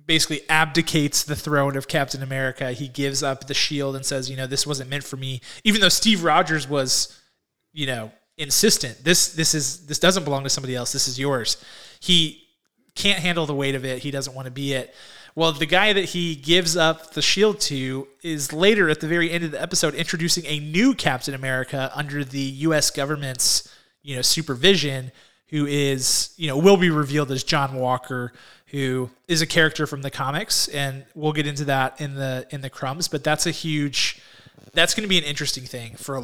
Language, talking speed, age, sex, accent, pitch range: English, 210 wpm, 20-39, male, American, 130-165 Hz